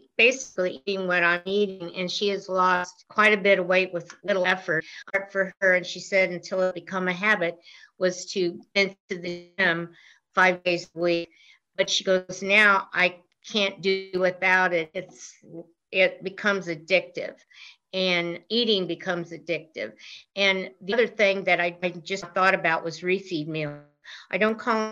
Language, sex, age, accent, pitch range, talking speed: English, female, 50-69, American, 170-190 Hz, 165 wpm